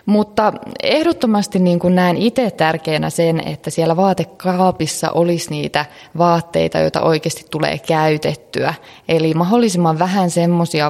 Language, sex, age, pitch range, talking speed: Finnish, female, 20-39, 155-205 Hz, 120 wpm